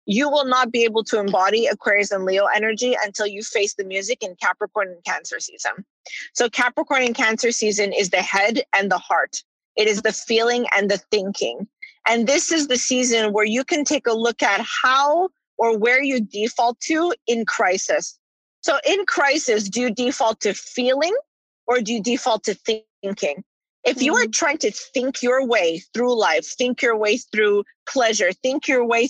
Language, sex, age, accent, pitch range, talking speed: English, female, 30-49, American, 205-255 Hz, 190 wpm